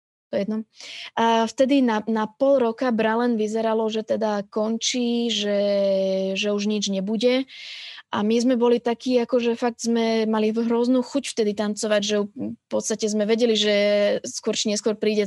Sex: female